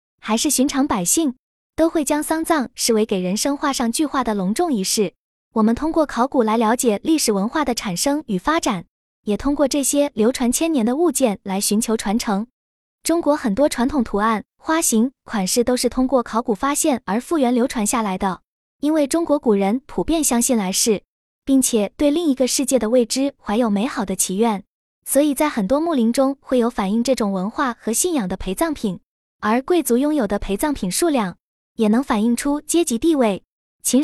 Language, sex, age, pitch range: Chinese, female, 20-39, 220-290 Hz